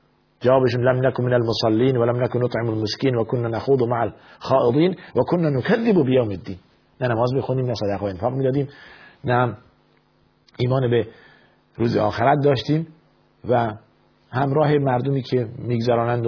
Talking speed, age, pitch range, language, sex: 140 wpm, 50-69, 105-130 Hz, Persian, male